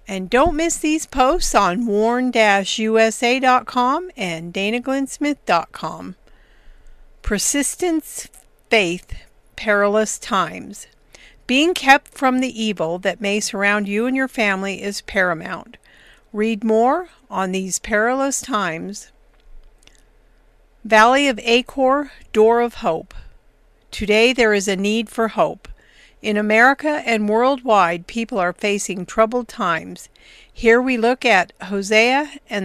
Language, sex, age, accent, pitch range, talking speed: English, female, 50-69, American, 195-245 Hz, 110 wpm